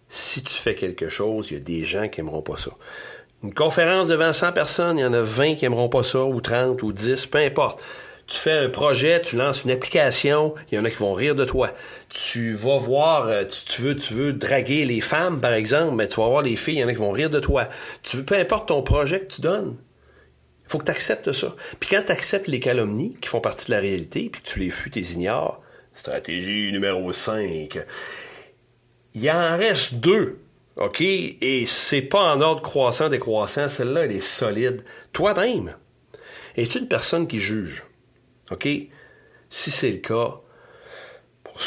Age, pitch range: 40-59, 105-145 Hz